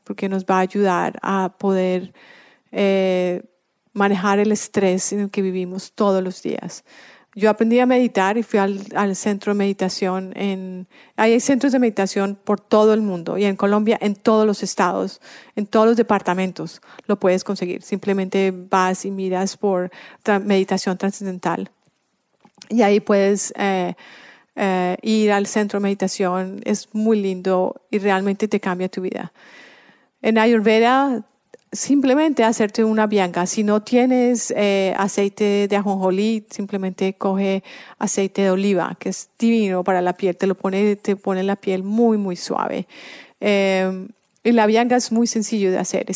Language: English